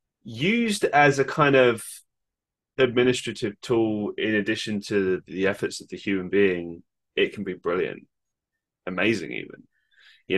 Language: English